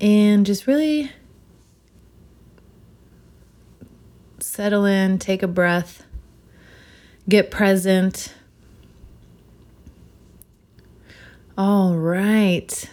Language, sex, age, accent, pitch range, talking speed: English, female, 30-49, American, 175-215 Hz, 55 wpm